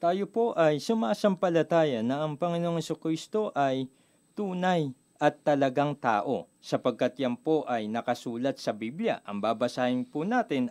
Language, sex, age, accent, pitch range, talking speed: Filipino, male, 40-59, native, 145-205 Hz, 135 wpm